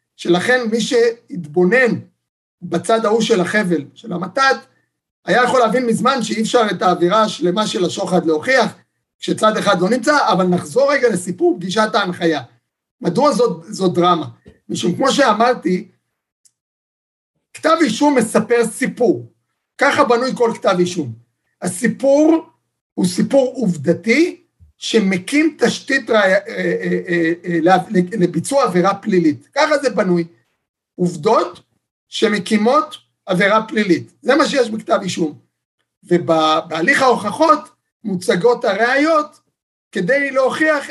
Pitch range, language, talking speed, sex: 180-250 Hz, Hebrew, 115 wpm, male